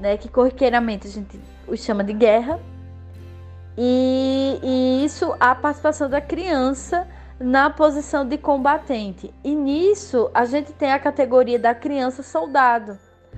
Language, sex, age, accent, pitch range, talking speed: Portuguese, female, 20-39, Brazilian, 205-275 Hz, 135 wpm